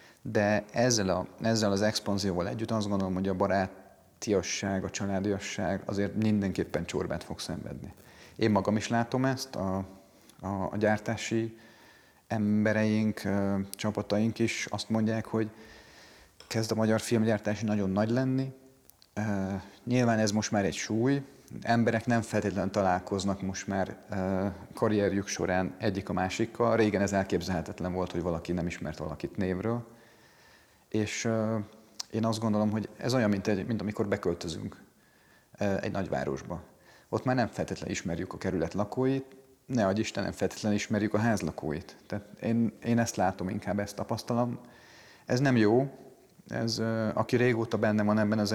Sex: male